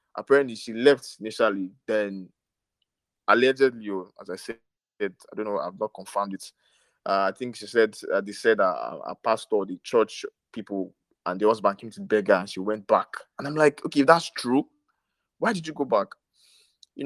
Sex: male